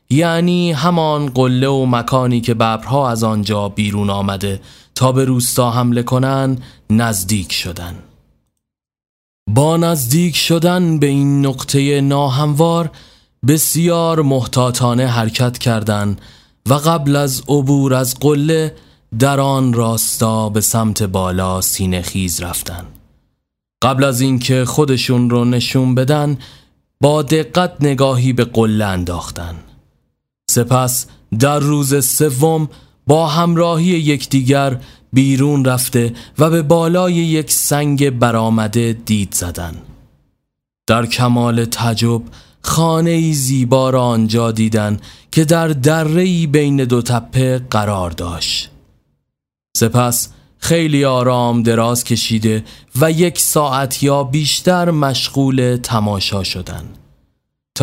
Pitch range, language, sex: 115-145 Hz, Persian, male